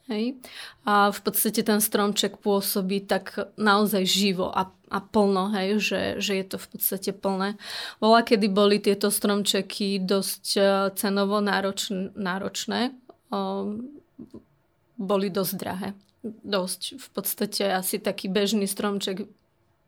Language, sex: Slovak, female